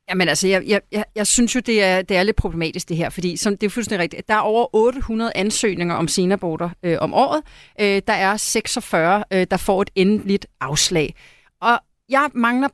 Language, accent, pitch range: Danish, native, 200-265 Hz